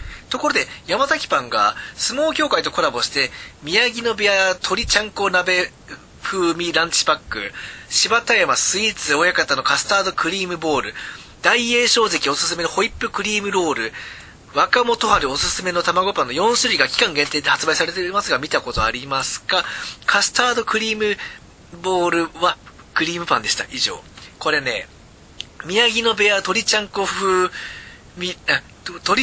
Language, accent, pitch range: Japanese, native, 170-240 Hz